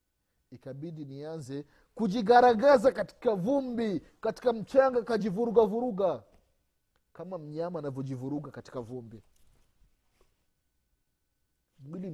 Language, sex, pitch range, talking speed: Swahili, male, 115-185 Hz, 75 wpm